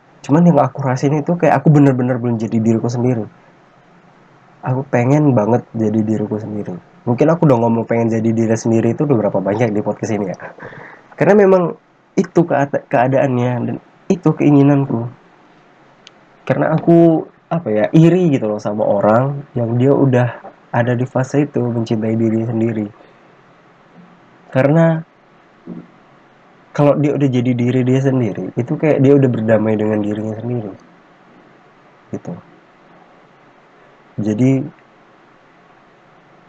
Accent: native